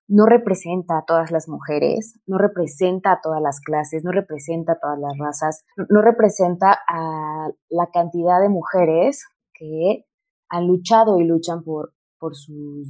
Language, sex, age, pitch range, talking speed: Spanish, female, 20-39, 165-210 Hz, 160 wpm